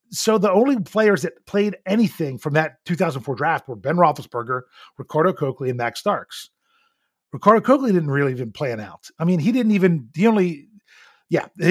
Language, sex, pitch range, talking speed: English, male, 140-195 Hz, 175 wpm